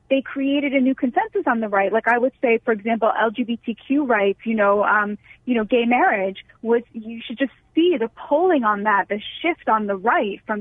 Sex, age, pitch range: female, 20-39, 215-265 Hz